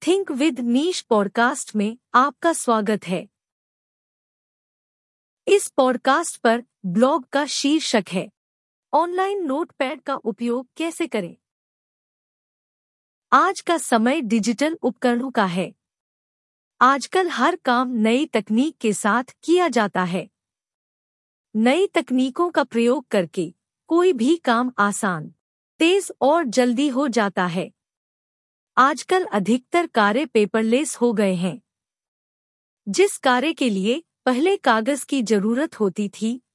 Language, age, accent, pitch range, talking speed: English, 50-69, Indian, 210-305 Hz, 115 wpm